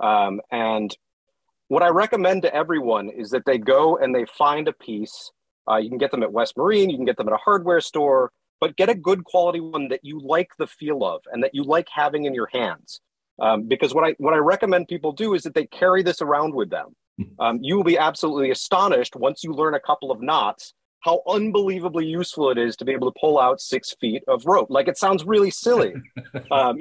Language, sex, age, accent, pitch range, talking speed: English, male, 40-59, American, 135-180 Hz, 230 wpm